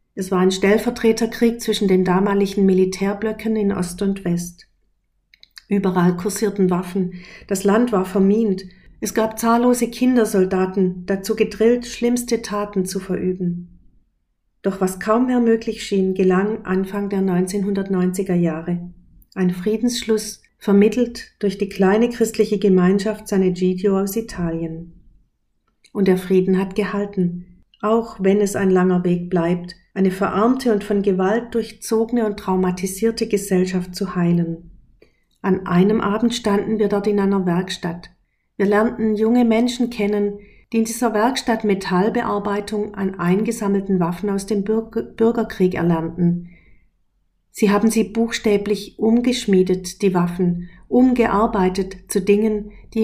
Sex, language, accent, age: female, German, German, 50-69